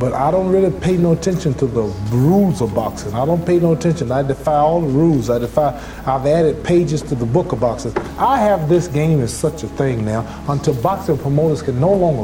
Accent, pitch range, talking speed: American, 140-195 Hz, 230 wpm